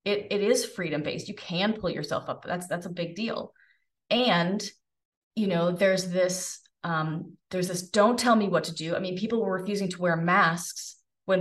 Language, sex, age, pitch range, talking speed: English, female, 30-49, 170-205 Hz, 205 wpm